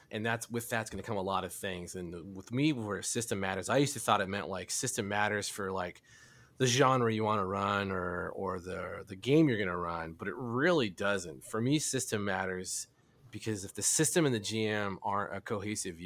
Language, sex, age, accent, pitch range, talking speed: English, male, 30-49, American, 95-115 Hz, 230 wpm